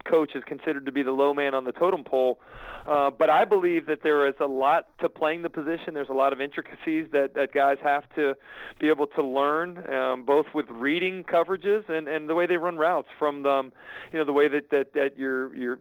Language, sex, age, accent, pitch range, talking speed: English, male, 40-59, American, 135-165 Hz, 235 wpm